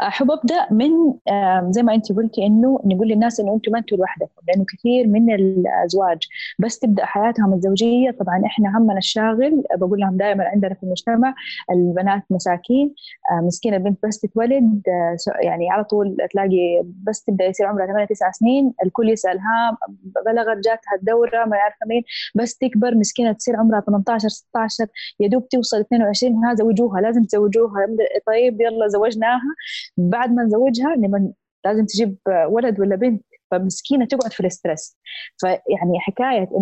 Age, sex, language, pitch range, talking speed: 20-39, female, Arabic, 190-235 Hz, 145 wpm